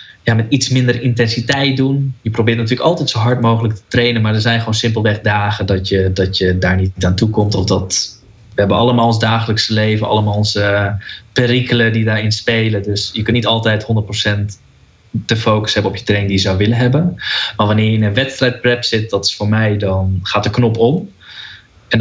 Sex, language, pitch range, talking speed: male, Dutch, 105-120 Hz, 215 wpm